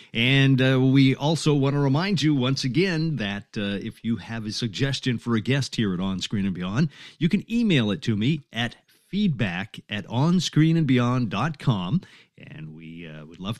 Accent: American